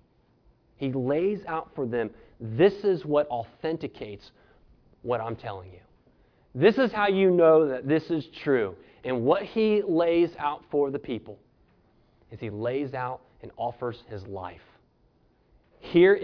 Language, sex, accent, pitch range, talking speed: English, male, American, 130-215 Hz, 145 wpm